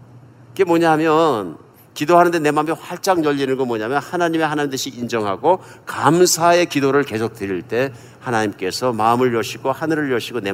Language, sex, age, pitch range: Korean, male, 50-69, 115-140 Hz